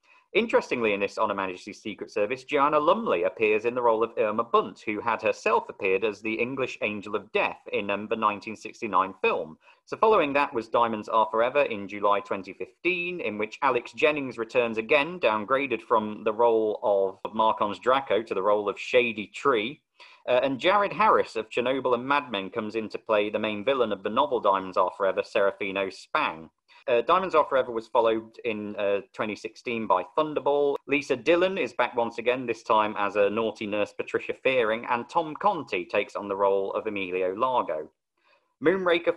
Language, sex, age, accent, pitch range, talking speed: English, male, 40-59, British, 105-180 Hz, 180 wpm